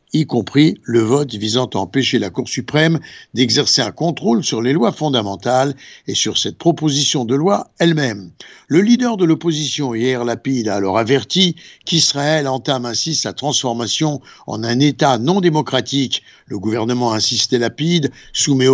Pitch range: 120-155 Hz